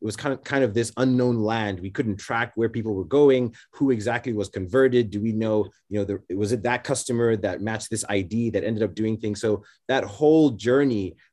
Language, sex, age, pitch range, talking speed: English, male, 30-49, 105-125 Hz, 230 wpm